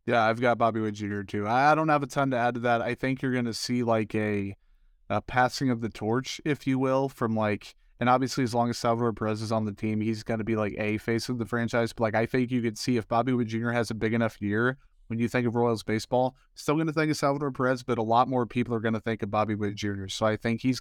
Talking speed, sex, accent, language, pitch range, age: 290 wpm, male, American, English, 110-125 Hz, 20-39